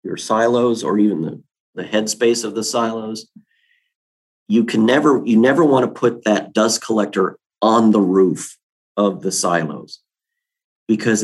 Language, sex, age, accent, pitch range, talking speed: English, male, 40-59, American, 105-120 Hz, 150 wpm